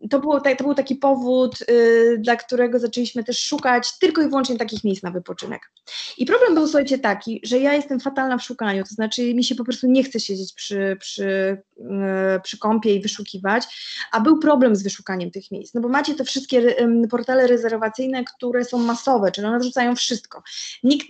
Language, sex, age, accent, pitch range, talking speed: Polish, female, 20-39, native, 215-255 Hz, 195 wpm